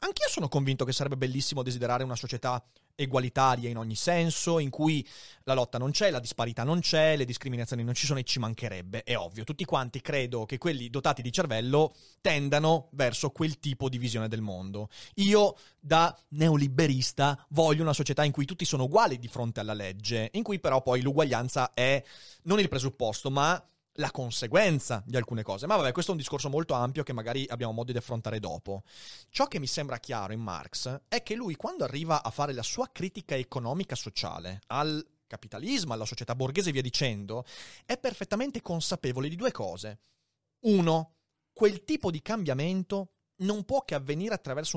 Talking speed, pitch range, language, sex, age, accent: 185 wpm, 125-170 Hz, Italian, male, 30-49, native